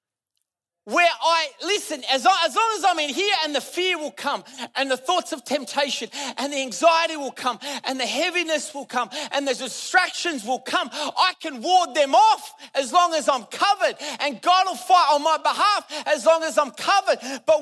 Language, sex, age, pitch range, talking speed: English, male, 30-49, 270-350 Hz, 200 wpm